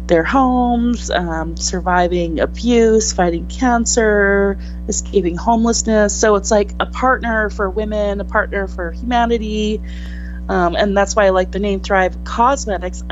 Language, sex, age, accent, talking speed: English, female, 30-49, American, 135 wpm